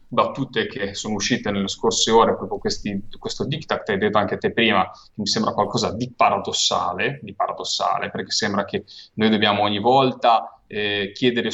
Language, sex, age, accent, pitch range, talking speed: Italian, male, 30-49, native, 100-125 Hz, 180 wpm